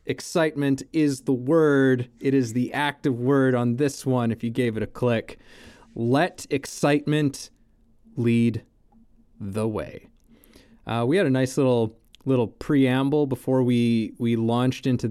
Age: 20-39